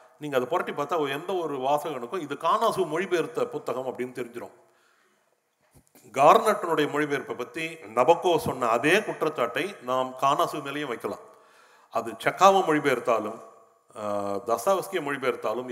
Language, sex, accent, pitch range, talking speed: Tamil, male, native, 120-170 Hz, 110 wpm